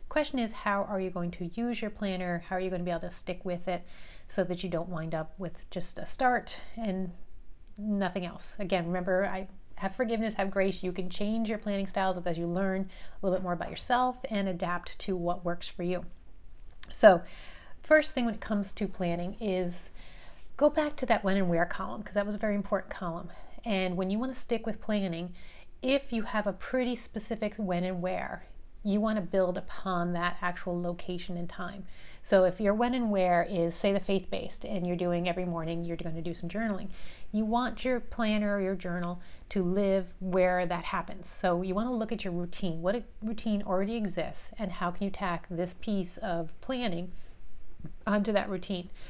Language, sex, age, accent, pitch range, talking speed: English, female, 30-49, American, 180-210 Hz, 210 wpm